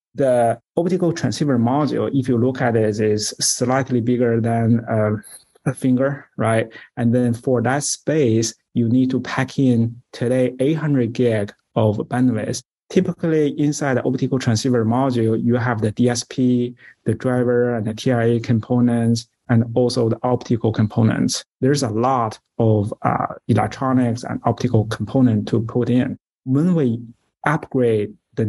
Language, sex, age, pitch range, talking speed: English, male, 30-49, 115-130 Hz, 145 wpm